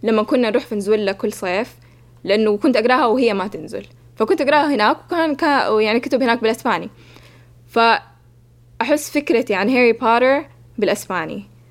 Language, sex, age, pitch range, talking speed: Arabic, female, 10-29, 175-245 Hz, 145 wpm